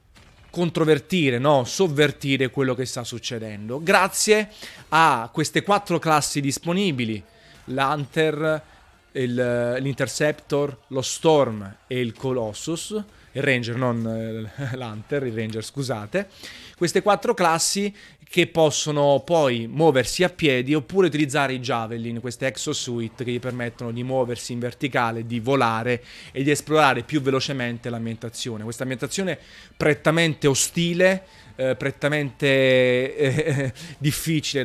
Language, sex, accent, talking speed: Italian, male, native, 110 wpm